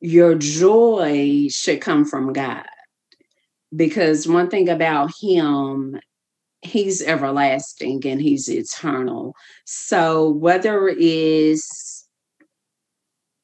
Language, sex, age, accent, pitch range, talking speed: English, female, 40-59, American, 145-220 Hz, 85 wpm